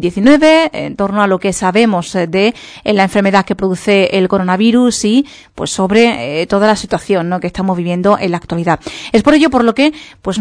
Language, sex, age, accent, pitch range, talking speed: Spanish, female, 30-49, Spanish, 185-220 Hz, 195 wpm